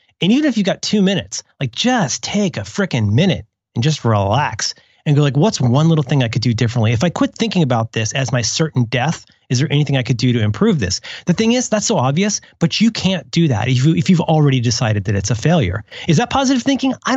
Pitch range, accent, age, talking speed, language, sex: 115-170 Hz, American, 30-49, 250 wpm, English, male